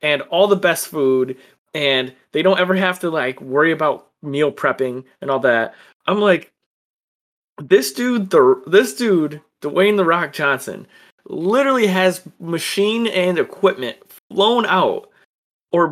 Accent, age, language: American, 20-39, English